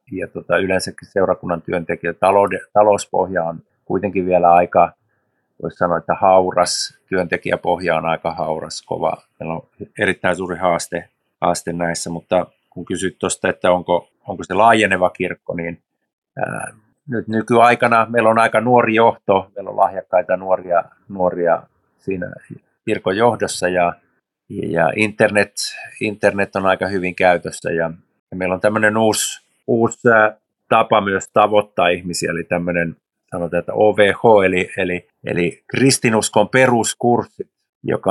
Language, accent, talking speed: Finnish, native, 130 wpm